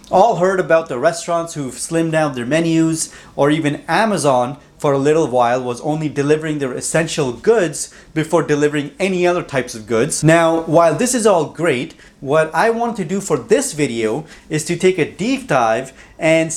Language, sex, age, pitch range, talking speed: English, male, 30-49, 145-185 Hz, 185 wpm